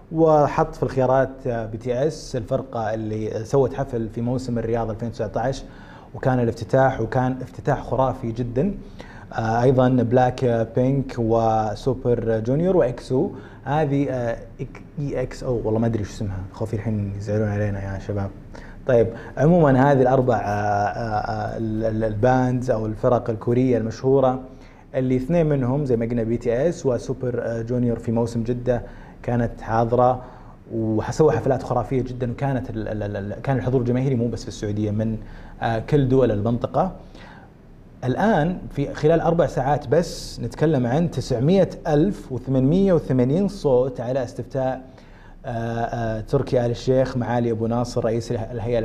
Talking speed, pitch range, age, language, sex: 130 wpm, 115-130 Hz, 20-39, Arabic, male